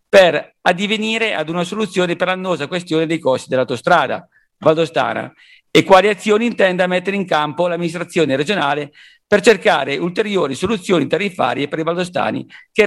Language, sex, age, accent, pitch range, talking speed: Italian, male, 50-69, native, 155-195 Hz, 140 wpm